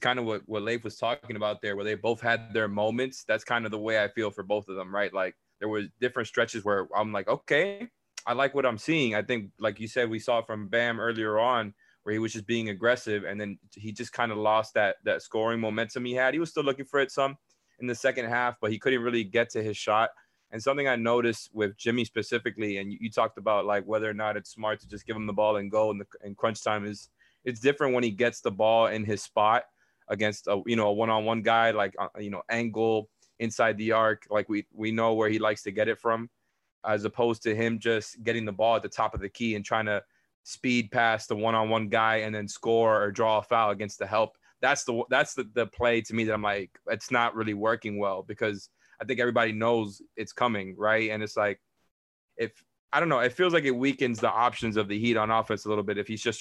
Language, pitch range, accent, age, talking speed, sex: English, 105-120 Hz, American, 20-39, 255 wpm, male